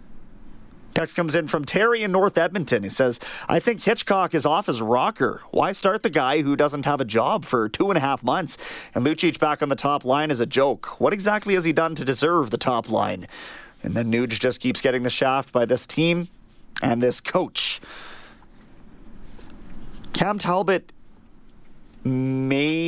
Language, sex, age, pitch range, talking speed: English, male, 30-49, 125-165 Hz, 180 wpm